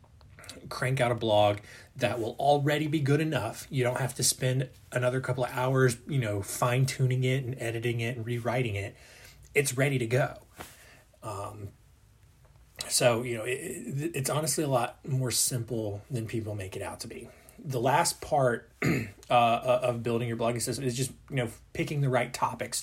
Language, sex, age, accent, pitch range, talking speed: English, male, 20-39, American, 115-130 Hz, 180 wpm